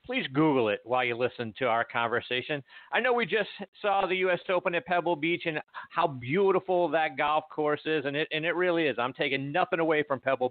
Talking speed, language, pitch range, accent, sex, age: 225 wpm, English, 125-180 Hz, American, male, 50-69